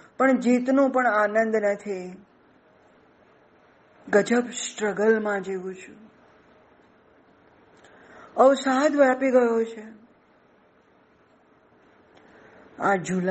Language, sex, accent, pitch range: Gujarati, female, native, 195-255 Hz